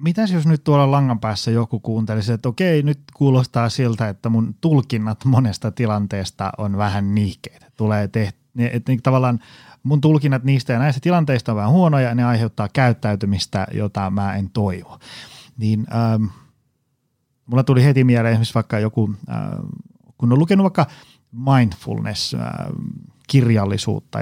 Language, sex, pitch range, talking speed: Finnish, male, 110-135 Hz, 140 wpm